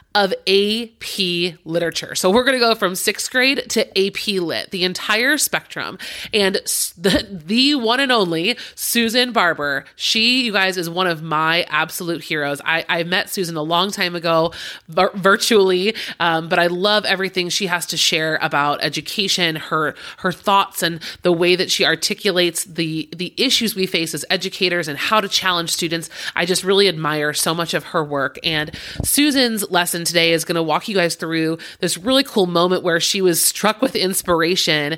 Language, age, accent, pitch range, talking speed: English, 30-49, American, 165-195 Hz, 185 wpm